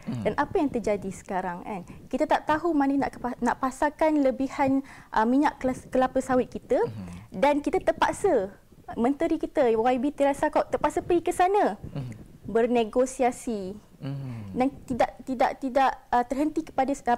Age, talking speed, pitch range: 20-39, 125 wpm, 240-300 Hz